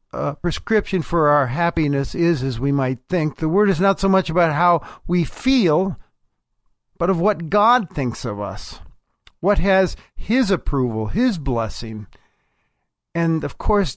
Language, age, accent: English, 50-69, American